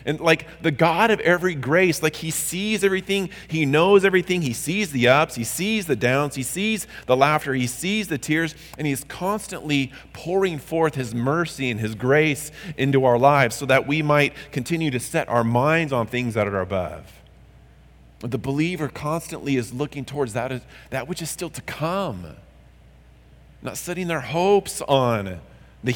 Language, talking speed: English, 180 wpm